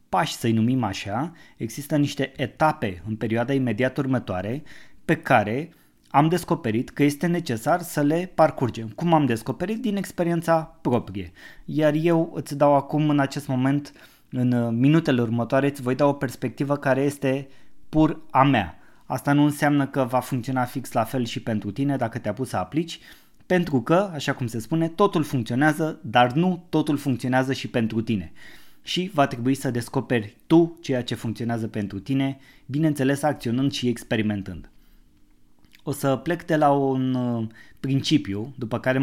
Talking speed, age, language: 160 wpm, 20-39, Romanian